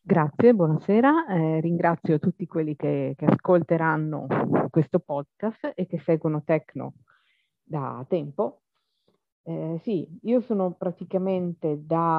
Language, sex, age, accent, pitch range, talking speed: Italian, female, 40-59, native, 160-195 Hz, 115 wpm